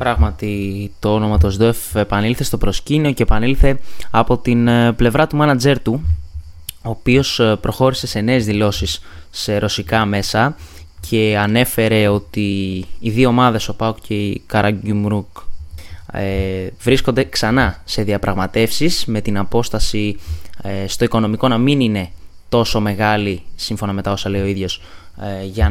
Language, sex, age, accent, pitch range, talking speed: Greek, male, 20-39, native, 100-135 Hz, 135 wpm